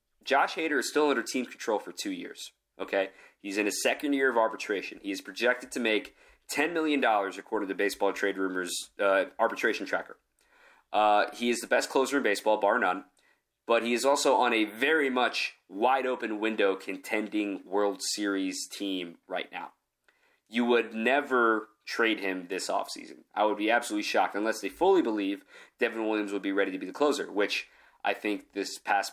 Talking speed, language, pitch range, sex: 185 wpm, English, 100-135 Hz, male